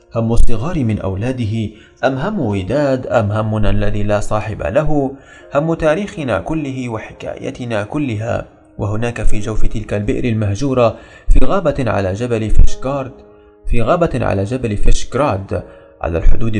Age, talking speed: 30-49, 130 wpm